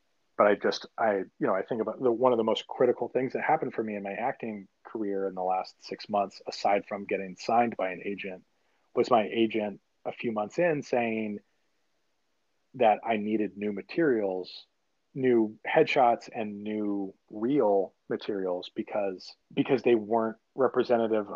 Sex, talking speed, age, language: male, 170 wpm, 30-49, English